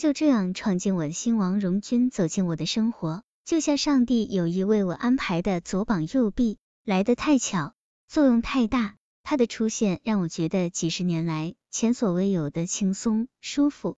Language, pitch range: Chinese, 185-250 Hz